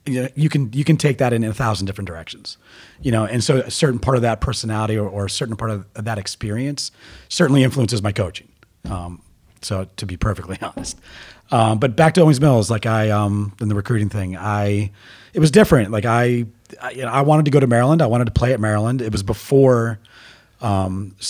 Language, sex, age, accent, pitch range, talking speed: English, male, 30-49, American, 105-130 Hz, 225 wpm